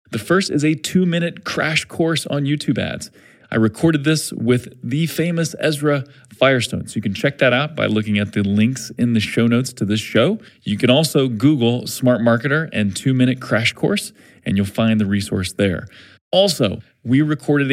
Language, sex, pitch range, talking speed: English, male, 110-150 Hz, 185 wpm